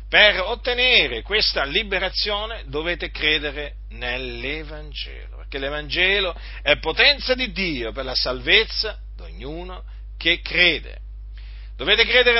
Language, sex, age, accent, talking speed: Italian, male, 50-69, native, 105 wpm